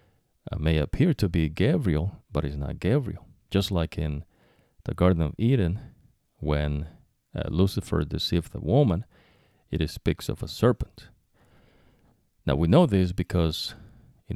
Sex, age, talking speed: male, 40-59, 140 wpm